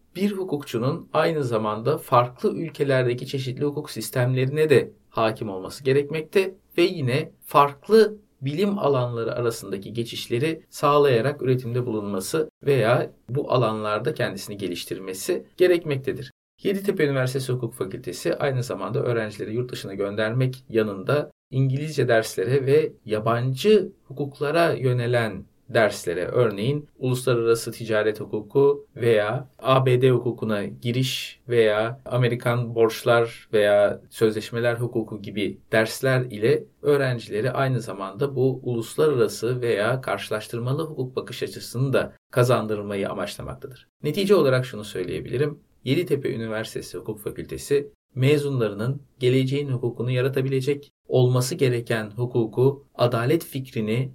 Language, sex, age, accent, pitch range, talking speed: Turkish, male, 50-69, native, 115-140 Hz, 105 wpm